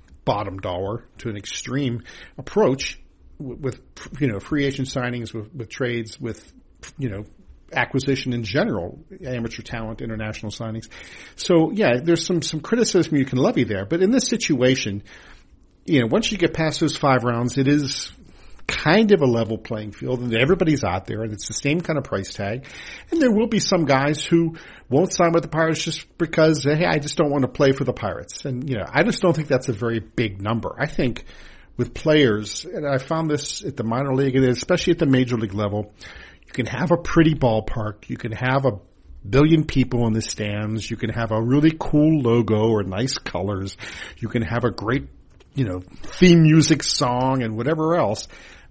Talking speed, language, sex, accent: 200 wpm, English, male, American